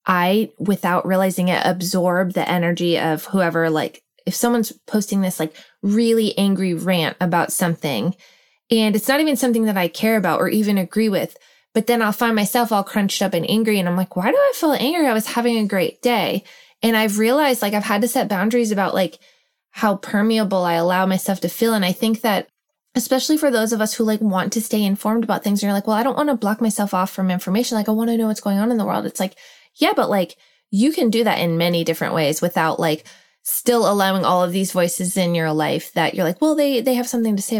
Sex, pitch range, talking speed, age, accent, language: female, 180-230 Hz, 240 wpm, 20-39, American, English